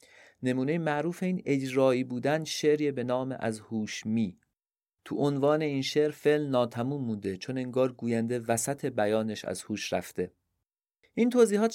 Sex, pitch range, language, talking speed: male, 105-140 Hz, Persian, 145 wpm